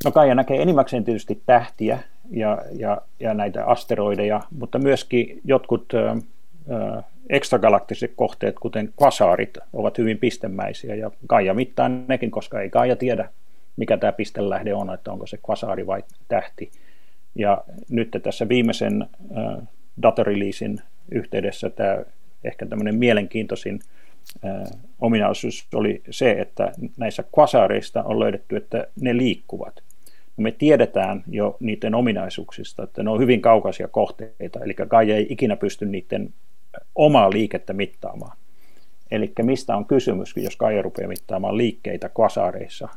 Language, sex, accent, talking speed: Finnish, male, native, 125 wpm